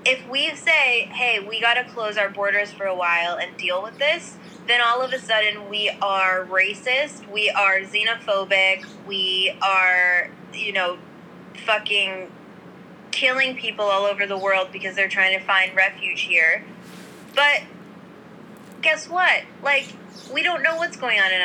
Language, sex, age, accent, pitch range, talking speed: English, female, 20-39, American, 195-260 Hz, 160 wpm